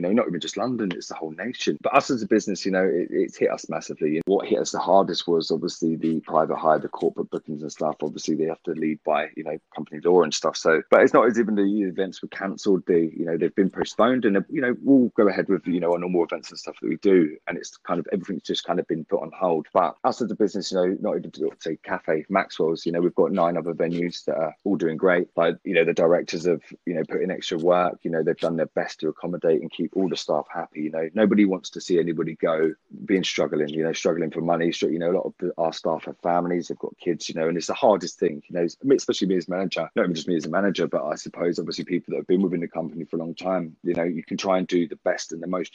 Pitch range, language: 80-95 Hz, English